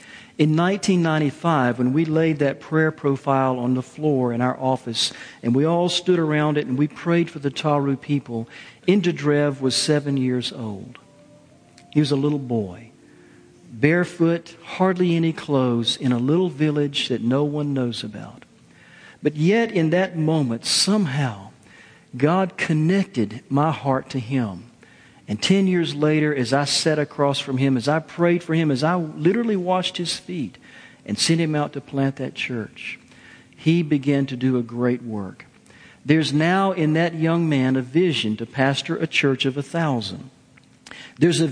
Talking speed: 165 wpm